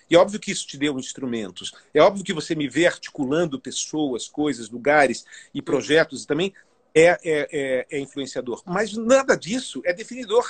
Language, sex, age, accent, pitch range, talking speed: Portuguese, male, 40-59, Brazilian, 135-180 Hz, 175 wpm